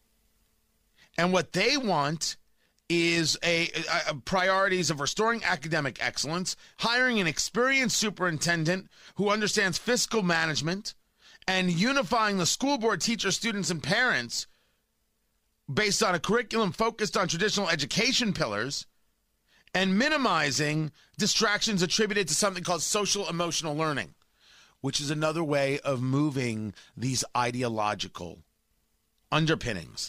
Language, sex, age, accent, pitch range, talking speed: English, male, 30-49, American, 120-195 Hz, 115 wpm